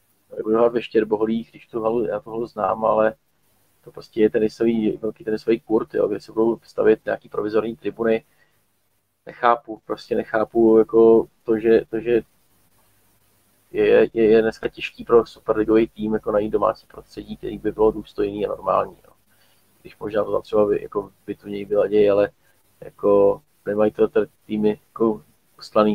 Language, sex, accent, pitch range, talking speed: Czech, male, native, 105-115 Hz, 160 wpm